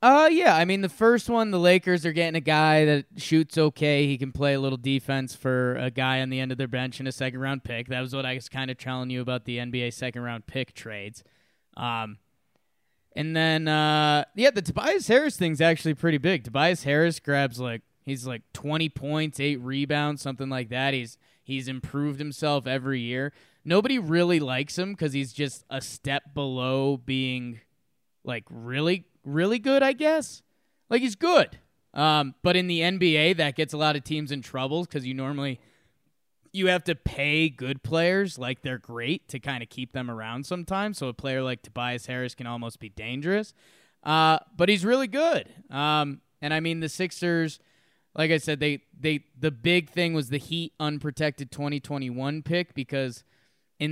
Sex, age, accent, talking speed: male, 20-39, American, 190 wpm